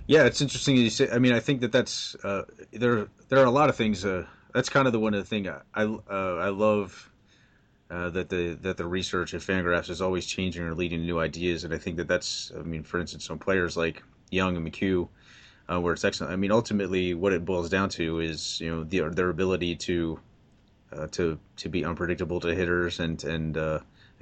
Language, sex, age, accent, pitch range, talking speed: English, male, 30-49, American, 80-95 Hz, 235 wpm